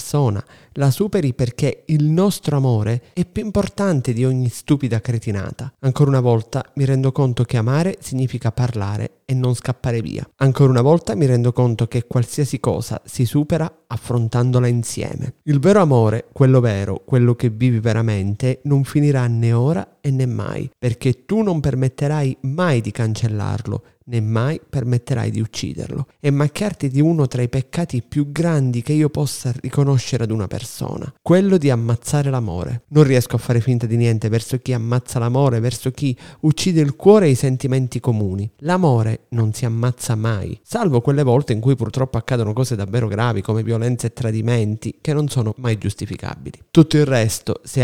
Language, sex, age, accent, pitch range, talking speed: Italian, male, 30-49, native, 115-140 Hz, 170 wpm